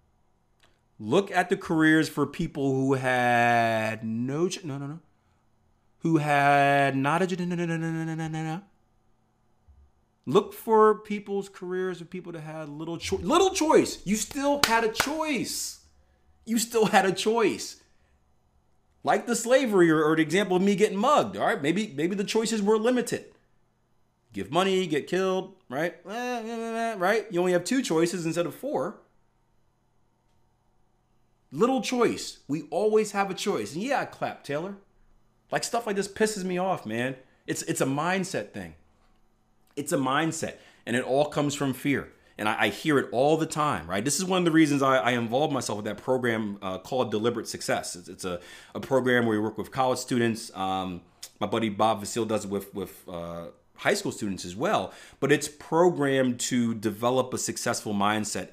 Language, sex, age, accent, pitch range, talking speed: English, male, 30-49, American, 110-185 Hz, 180 wpm